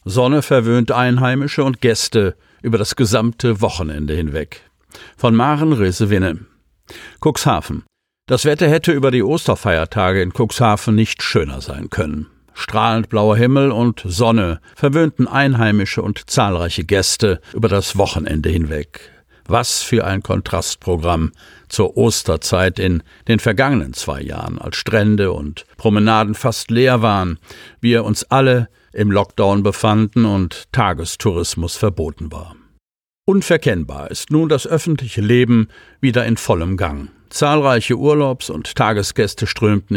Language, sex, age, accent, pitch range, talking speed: German, male, 50-69, German, 95-125 Hz, 125 wpm